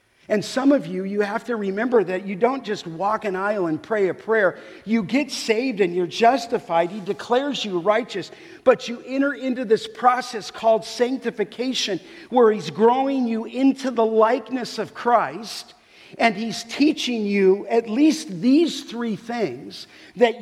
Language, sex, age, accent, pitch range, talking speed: English, male, 50-69, American, 210-260 Hz, 165 wpm